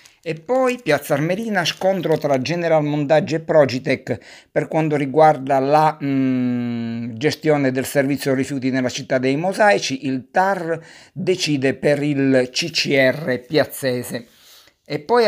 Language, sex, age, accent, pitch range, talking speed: Italian, male, 50-69, native, 135-170 Hz, 125 wpm